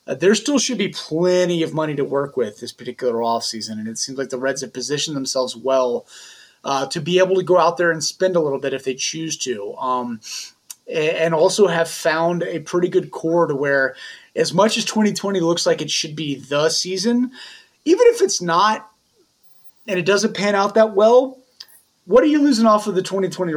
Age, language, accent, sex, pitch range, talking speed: 30-49, English, American, male, 145-205 Hz, 205 wpm